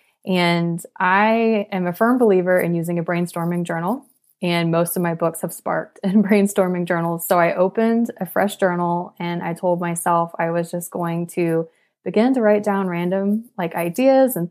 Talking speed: 180 wpm